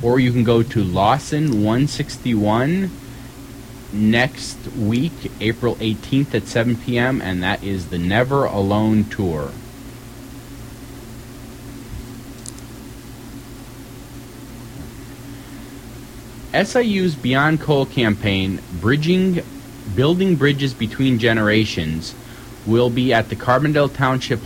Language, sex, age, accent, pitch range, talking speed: English, male, 30-49, American, 110-135 Hz, 90 wpm